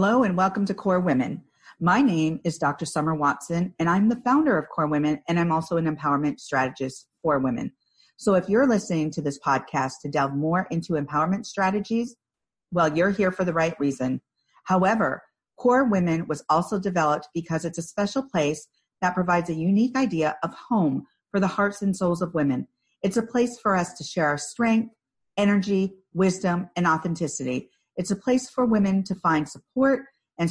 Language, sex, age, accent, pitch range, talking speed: English, female, 40-59, American, 155-200 Hz, 185 wpm